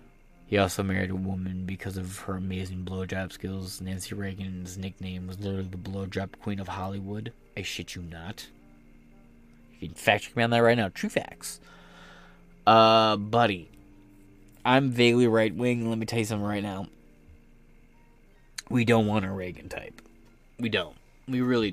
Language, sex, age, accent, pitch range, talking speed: English, male, 20-39, American, 85-115 Hz, 165 wpm